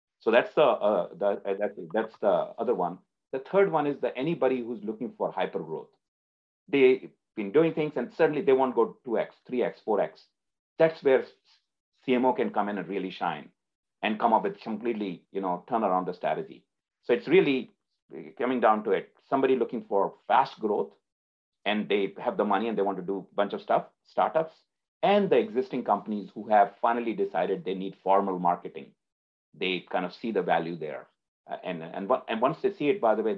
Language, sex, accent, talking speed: English, male, Indian, 205 wpm